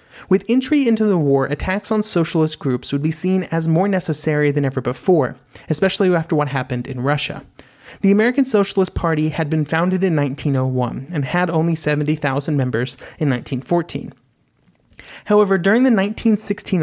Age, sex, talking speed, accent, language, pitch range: 30-49, male, 155 wpm, American, English, 145-190 Hz